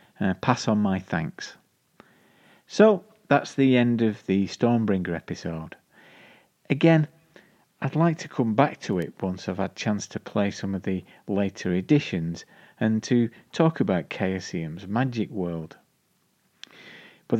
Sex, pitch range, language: male, 95-135 Hz, English